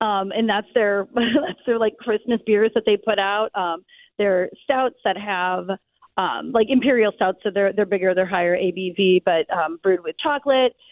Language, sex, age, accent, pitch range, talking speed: English, female, 30-49, American, 195-250 Hz, 185 wpm